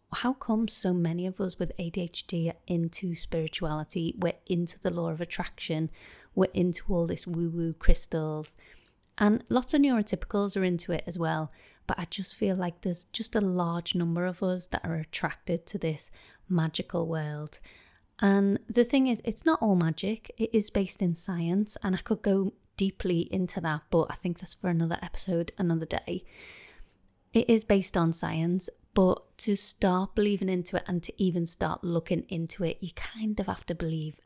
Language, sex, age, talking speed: English, female, 30-49, 185 wpm